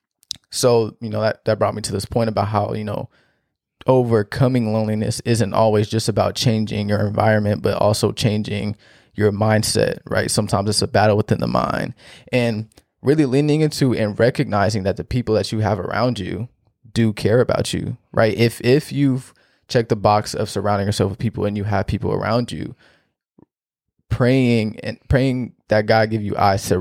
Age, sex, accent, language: 20-39, male, American, English